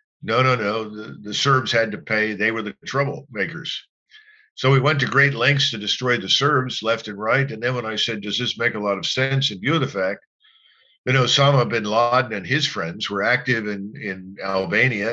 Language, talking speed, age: English, 220 wpm, 50-69